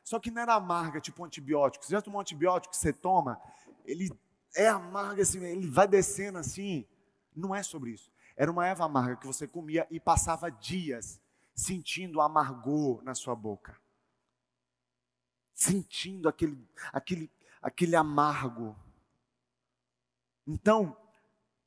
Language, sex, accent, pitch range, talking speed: Portuguese, male, Brazilian, 120-165 Hz, 130 wpm